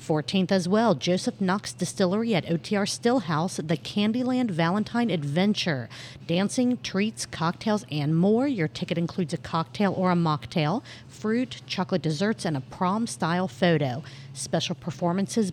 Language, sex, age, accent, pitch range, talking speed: English, female, 40-59, American, 160-205 Hz, 135 wpm